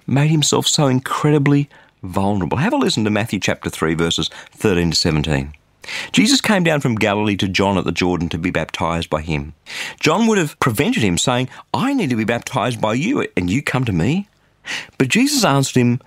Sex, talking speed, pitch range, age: male, 200 wpm, 95-145 Hz, 40-59